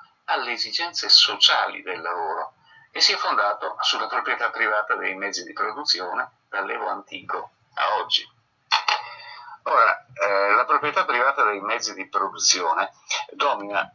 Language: Italian